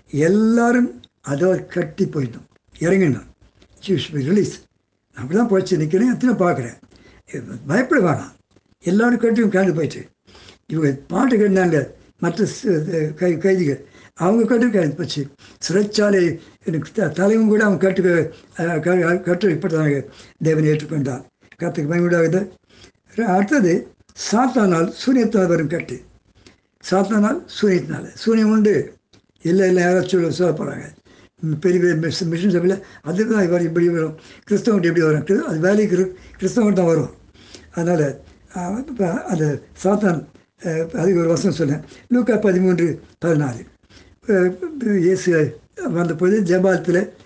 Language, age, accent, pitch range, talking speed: Tamil, 60-79, native, 160-195 Hz, 110 wpm